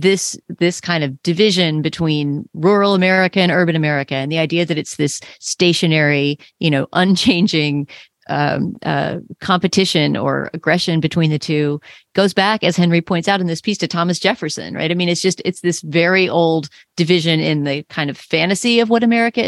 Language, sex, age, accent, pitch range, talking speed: English, female, 30-49, American, 160-200 Hz, 180 wpm